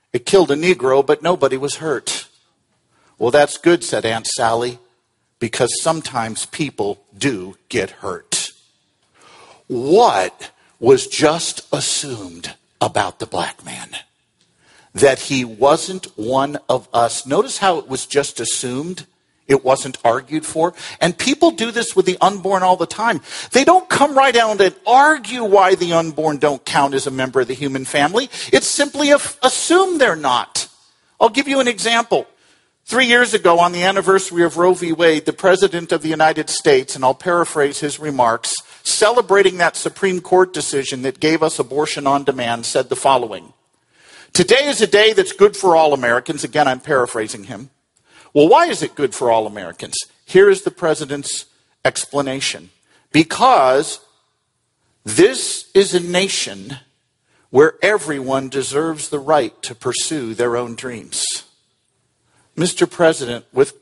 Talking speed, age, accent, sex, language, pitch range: 150 wpm, 50-69, American, male, English, 135-195 Hz